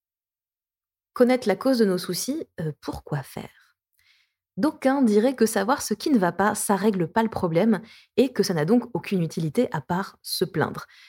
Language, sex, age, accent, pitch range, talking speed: French, female, 20-39, French, 165-225 Hz, 180 wpm